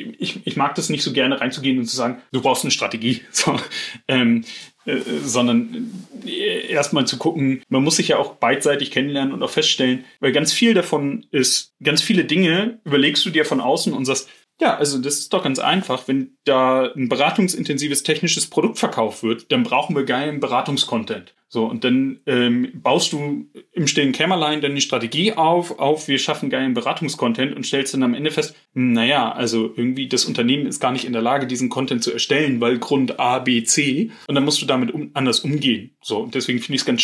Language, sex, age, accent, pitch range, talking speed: German, male, 30-49, German, 125-160 Hz, 205 wpm